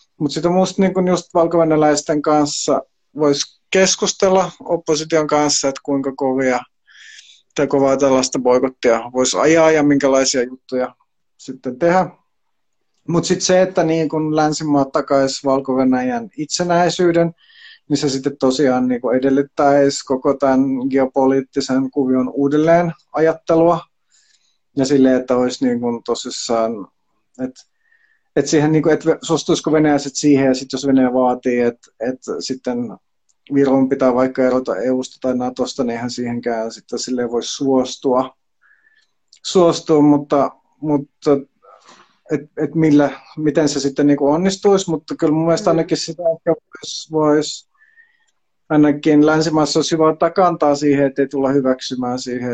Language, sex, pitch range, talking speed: Finnish, male, 130-160 Hz, 120 wpm